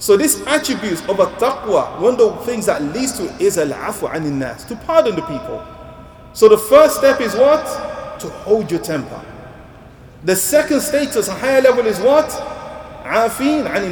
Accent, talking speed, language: Nigerian, 175 wpm, English